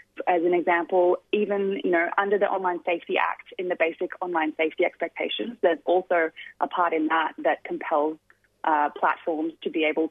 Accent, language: Australian, English